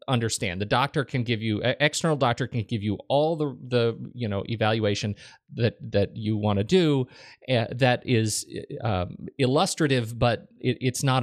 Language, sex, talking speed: English, male, 170 wpm